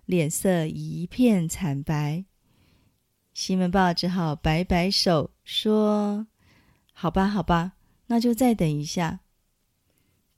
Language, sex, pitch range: Chinese, female, 180-235 Hz